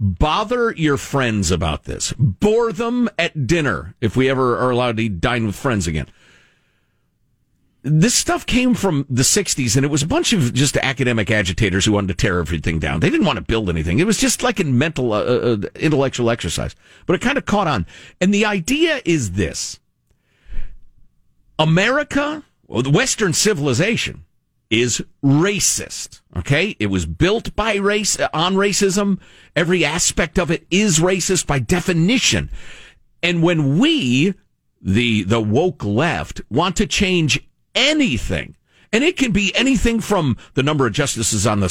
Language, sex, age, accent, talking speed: English, male, 50-69, American, 165 wpm